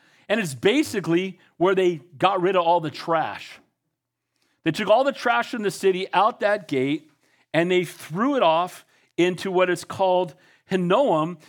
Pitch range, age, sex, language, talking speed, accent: 180-245 Hz, 40-59, male, English, 165 wpm, American